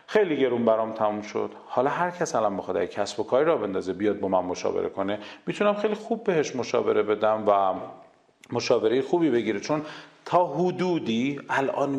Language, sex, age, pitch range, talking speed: Persian, male, 40-59, 120-190 Hz, 175 wpm